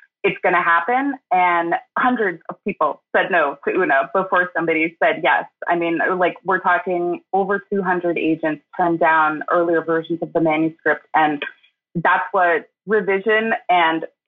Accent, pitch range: American, 170-210 Hz